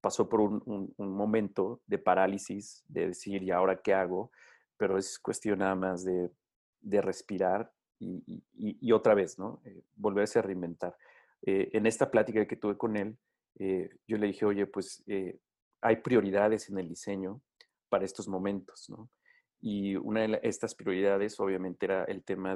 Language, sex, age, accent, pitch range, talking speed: Spanish, male, 40-59, Mexican, 95-110 Hz, 175 wpm